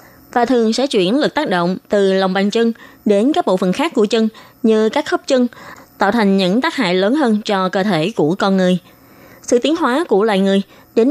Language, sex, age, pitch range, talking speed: Vietnamese, female, 20-39, 190-255 Hz, 225 wpm